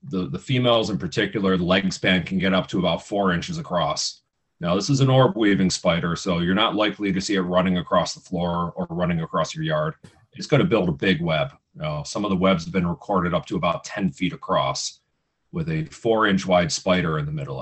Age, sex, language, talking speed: 40-59, male, English, 230 wpm